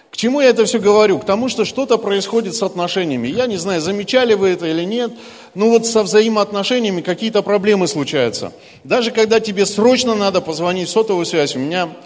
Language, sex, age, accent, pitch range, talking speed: Russian, male, 40-59, native, 180-240 Hz, 195 wpm